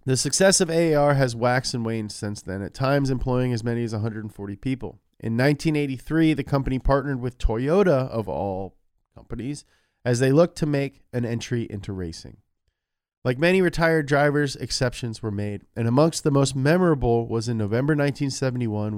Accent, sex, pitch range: American, male, 110-145 Hz